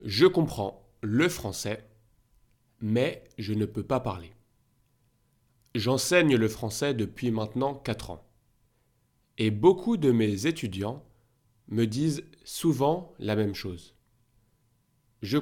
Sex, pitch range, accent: male, 110-130 Hz, French